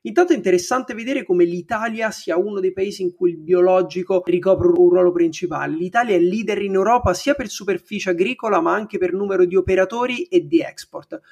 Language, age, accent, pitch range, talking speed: Italian, 30-49, native, 180-225 Hz, 190 wpm